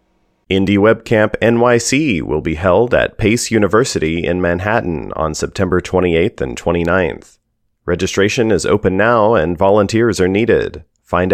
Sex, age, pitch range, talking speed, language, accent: male, 30-49, 85-110 Hz, 125 wpm, English, American